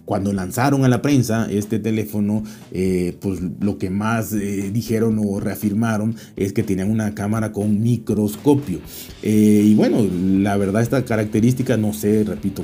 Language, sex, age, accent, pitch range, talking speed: Spanish, male, 40-59, Mexican, 100-120 Hz, 155 wpm